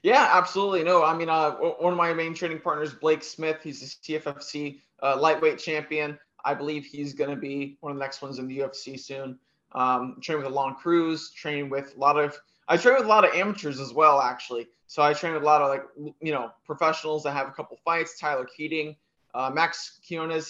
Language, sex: English, male